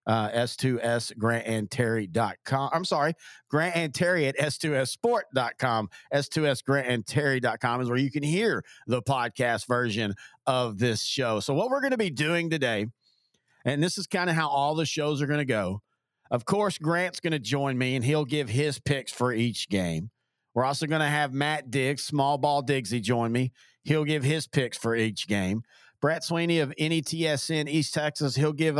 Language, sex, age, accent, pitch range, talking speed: English, male, 40-59, American, 130-160 Hz, 170 wpm